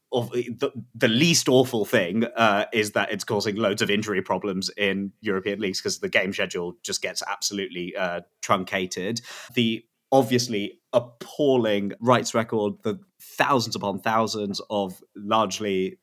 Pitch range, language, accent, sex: 105-140 Hz, English, British, male